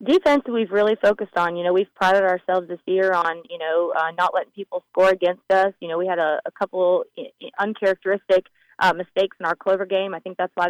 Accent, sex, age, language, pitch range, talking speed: American, female, 20-39, English, 175-190 Hz, 225 wpm